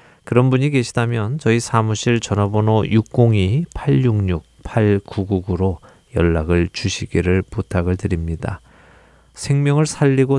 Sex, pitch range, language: male, 90-120 Hz, Korean